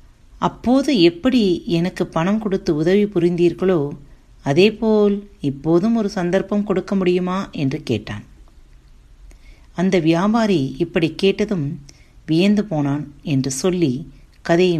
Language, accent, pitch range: Tamil, native, 135-195 Hz